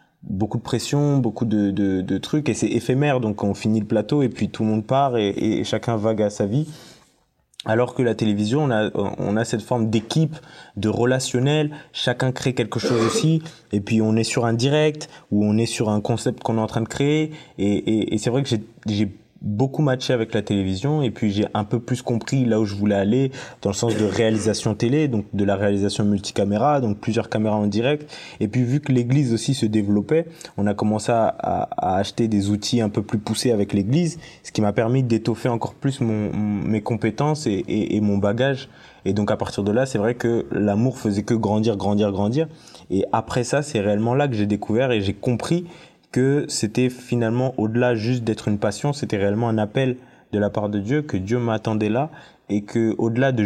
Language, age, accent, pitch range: French, 20-39, French, 105-130 Hz